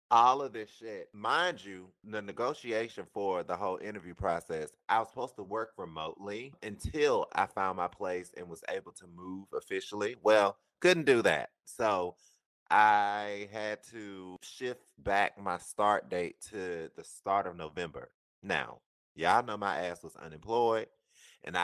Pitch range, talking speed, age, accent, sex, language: 90-115 Hz, 155 wpm, 30-49, American, male, English